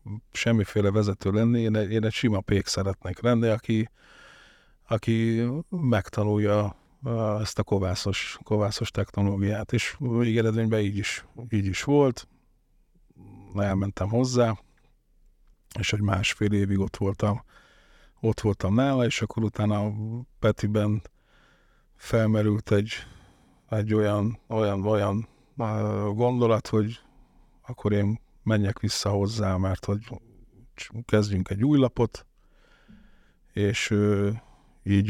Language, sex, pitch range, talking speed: Hungarian, male, 100-115 Hz, 110 wpm